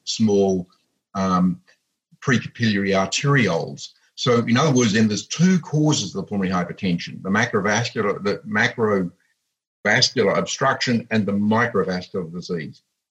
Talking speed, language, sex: 110 wpm, English, male